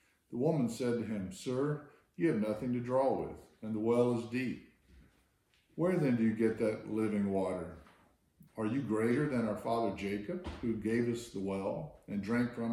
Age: 50-69